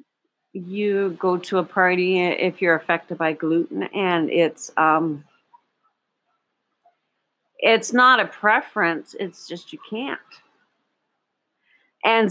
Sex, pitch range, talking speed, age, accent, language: female, 175-245 Hz, 105 wpm, 50-69, American, English